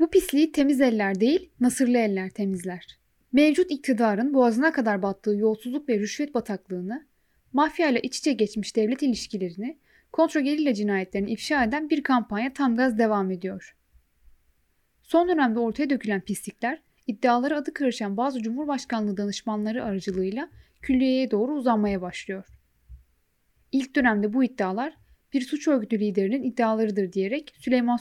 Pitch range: 200-270 Hz